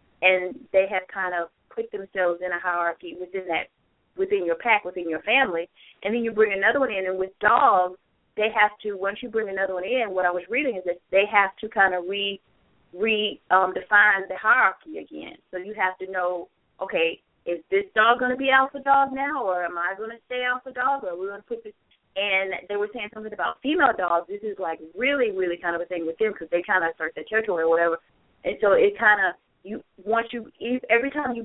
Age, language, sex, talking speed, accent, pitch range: 20-39, English, female, 235 wpm, American, 175-220 Hz